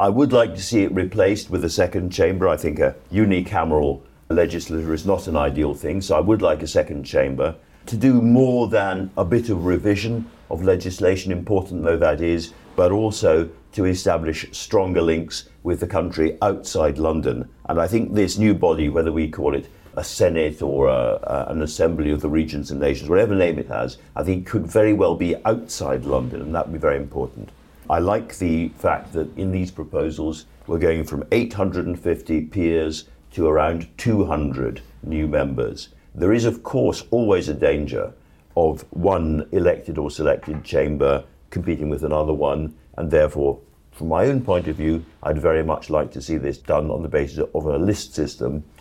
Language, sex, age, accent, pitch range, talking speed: English, male, 50-69, British, 75-95 Hz, 185 wpm